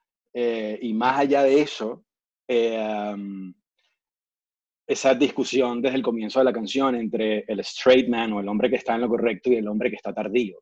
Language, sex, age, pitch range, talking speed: English, male, 30-49, 105-130 Hz, 185 wpm